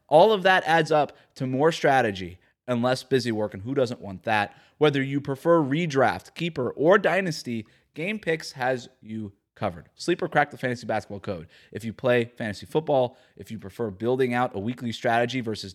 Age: 20-39